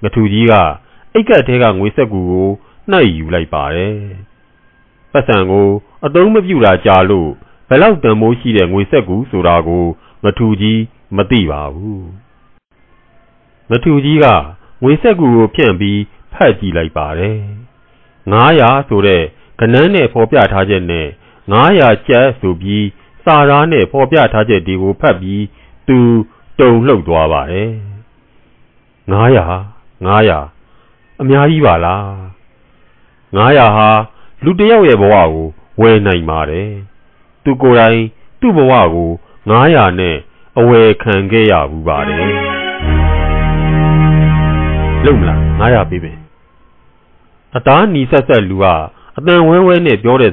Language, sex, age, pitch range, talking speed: English, male, 50-69, 90-120 Hz, 50 wpm